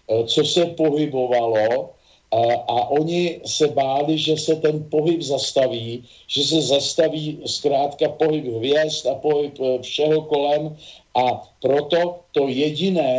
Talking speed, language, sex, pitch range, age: 125 wpm, Slovak, male, 130-155 Hz, 50-69